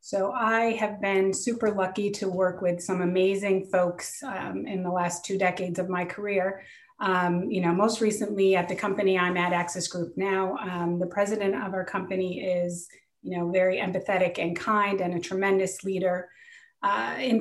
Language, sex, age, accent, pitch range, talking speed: English, female, 30-49, American, 180-205 Hz, 185 wpm